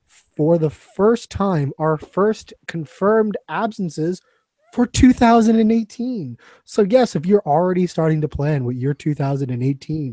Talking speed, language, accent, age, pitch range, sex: 125 wpm, English, American, 20-39, 135-180 Hz, male